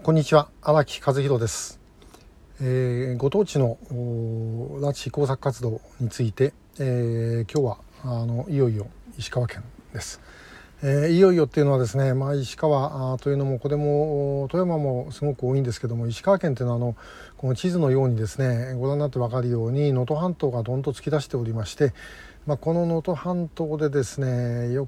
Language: Japanese